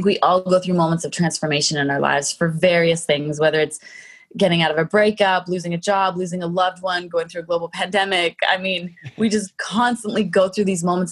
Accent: American